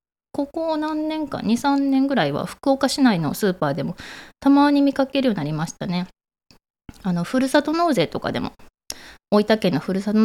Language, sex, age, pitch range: Japanese, female, 20-39, 175-260 Hz